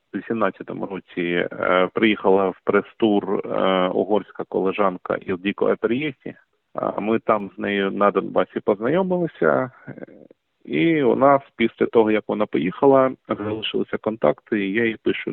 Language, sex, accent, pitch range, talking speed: Ukrainian, male, native, 95-115 Hz, 125 wpm